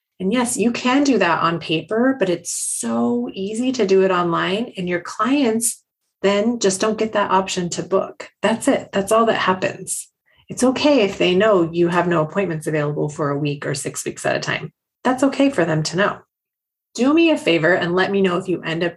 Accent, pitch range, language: American, 165-220 Hz, English